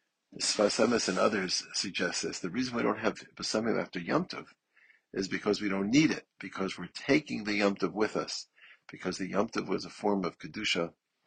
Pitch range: 90-105 Hz